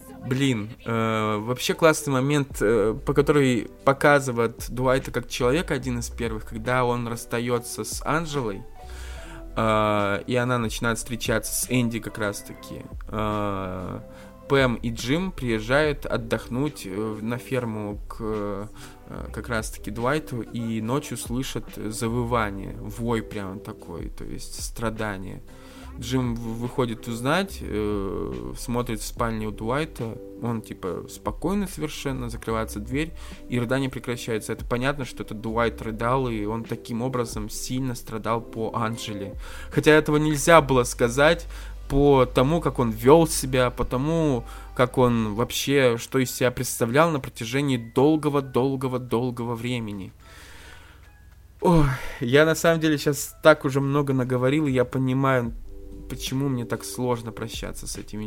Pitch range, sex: 110-130 Hz, male